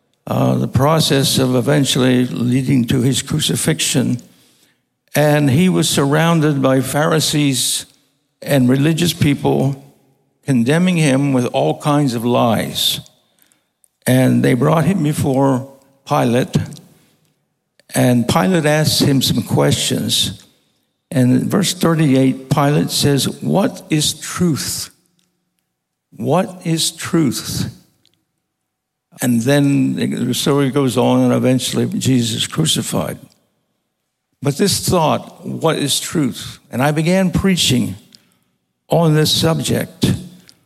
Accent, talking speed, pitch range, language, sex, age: American, 110 wpm, 130-160 Hz, Spanish, male, 60-79